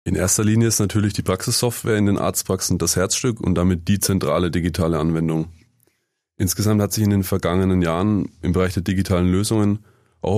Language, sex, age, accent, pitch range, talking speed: German, male, 30-49, German, 90-110 Hz, 180 wpm